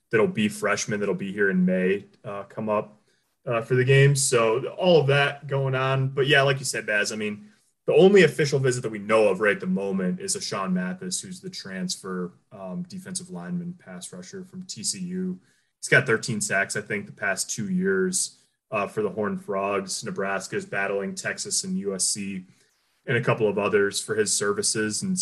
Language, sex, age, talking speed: English, male, 30-49, 200 wpm